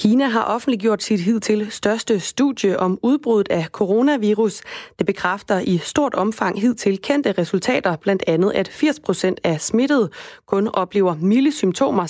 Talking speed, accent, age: 150 wpm, native, 30-49